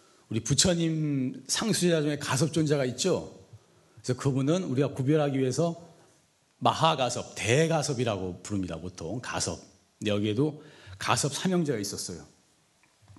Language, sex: Korean, male